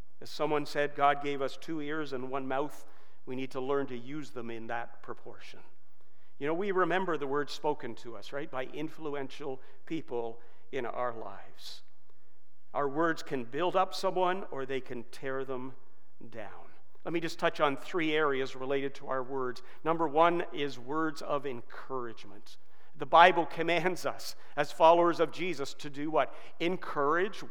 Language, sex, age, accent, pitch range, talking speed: English, male, 50-69, American, 135-180 Hz, 170 wpm